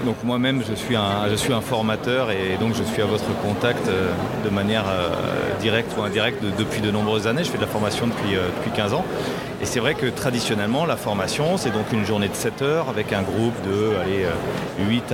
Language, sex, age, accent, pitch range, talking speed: French, male, 30-49, French, 105-130 Hz, 215 wpm